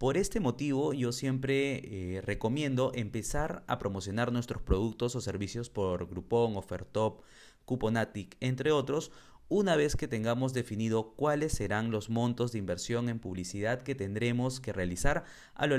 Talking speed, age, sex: 150 wpm, 30-49, male